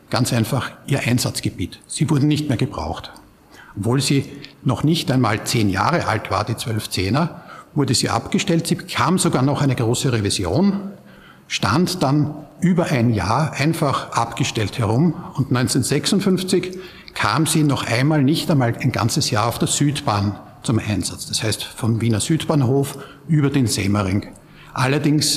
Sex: male